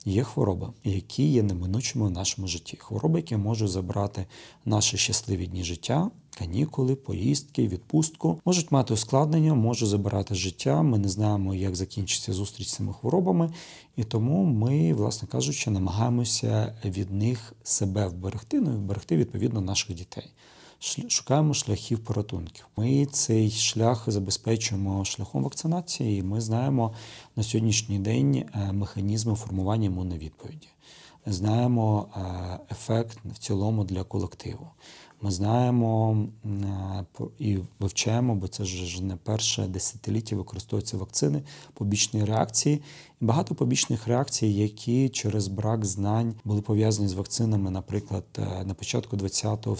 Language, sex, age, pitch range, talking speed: Ukrainian, male, 40-59, 100-125 Hz, 125 wpm